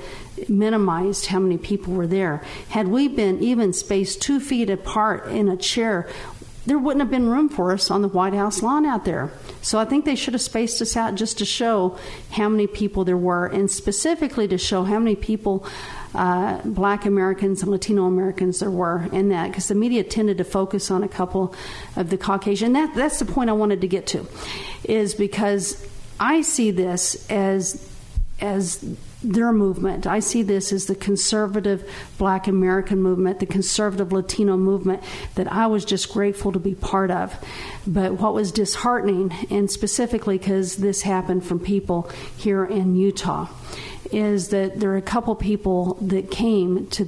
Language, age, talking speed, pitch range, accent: English, 50-69, 180 wpm, 190-215 Hz, American